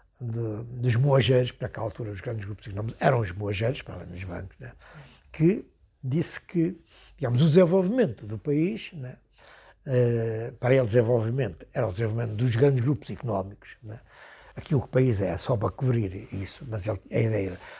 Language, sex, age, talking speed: Portuguese, male, 60-79, 175 wpm